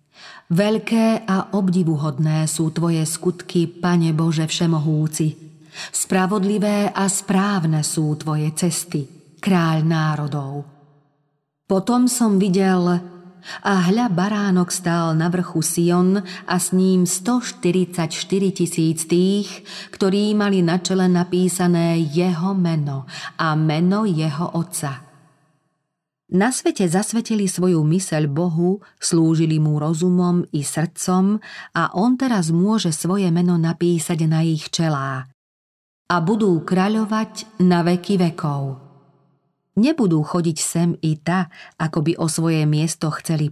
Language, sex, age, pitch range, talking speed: Slovak, female, 40-59, 155-190 Hz, 115 wpm